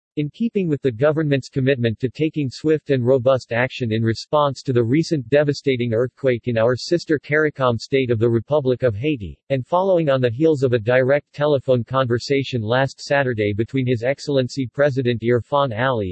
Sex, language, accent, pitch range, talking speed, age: male, English, American, 120-150 Hz, 175 wpm, 50-69